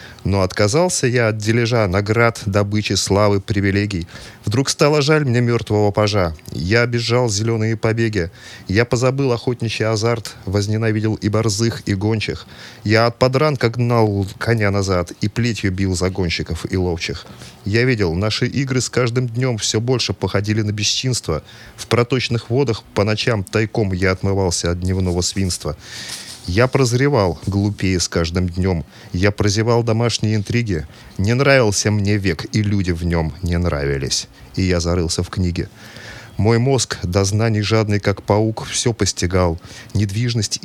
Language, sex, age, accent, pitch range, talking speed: Russian, male, 30-49, native, 95-120 Hz, 145 wpm